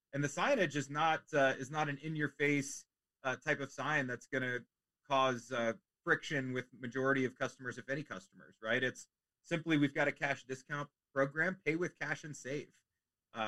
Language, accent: English, American